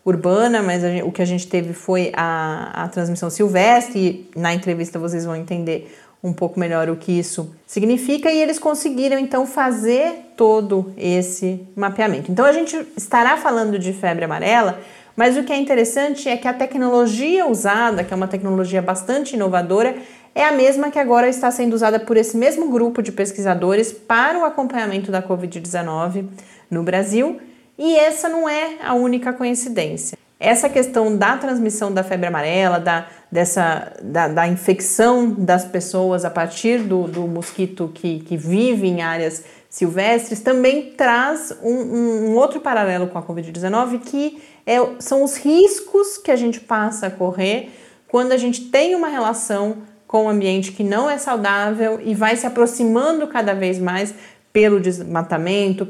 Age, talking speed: 30-49, 165 wpm